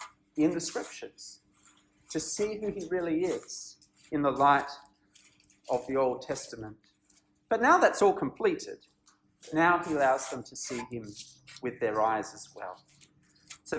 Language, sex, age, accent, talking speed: English, male, 40-59, Australian, 150 wpm